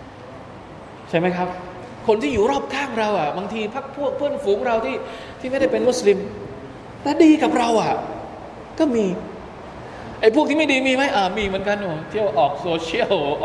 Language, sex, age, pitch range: Thai, male, 20-39, 150-225 Hz